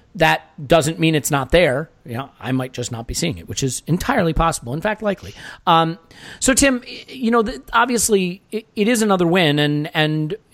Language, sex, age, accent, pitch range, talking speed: English, male, 40-59, American, 150-205 Hz, 190 wpm